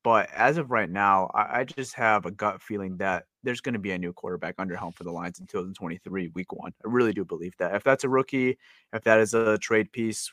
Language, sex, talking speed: English, male, 255 wpm